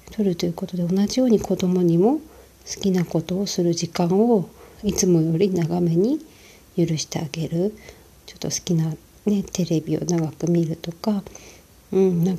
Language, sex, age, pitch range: Japanese, female, 40-59, 165-200 Hz